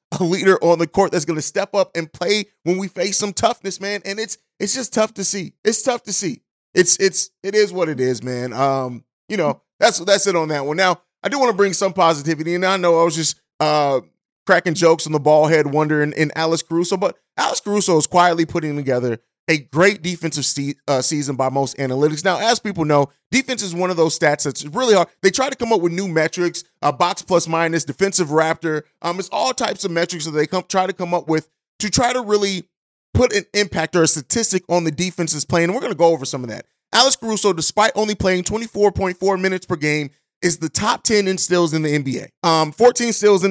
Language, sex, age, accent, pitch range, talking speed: English, male, 30-49, American, 160-205 Hz, 235 wpm